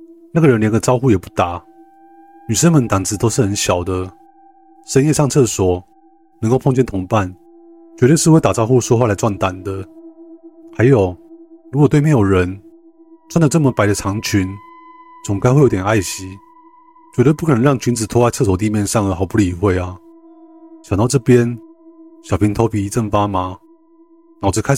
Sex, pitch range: male, 105-160 Hz